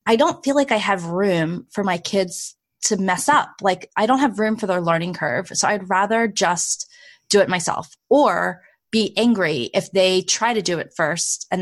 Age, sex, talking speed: 20-39, female, 205 wpm